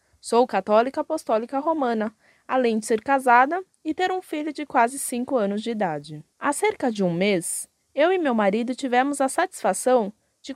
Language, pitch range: Portuguese, 205-280 Hz